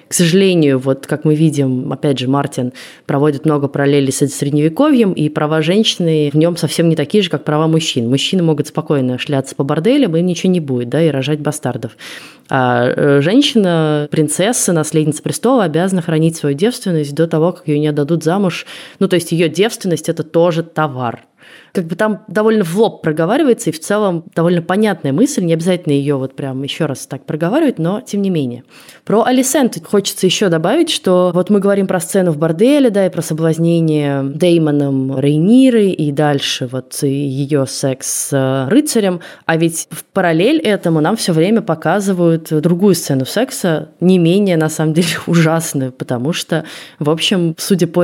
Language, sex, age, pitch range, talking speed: Russian, female, 20-39, 145-185 Hz, 175 wpm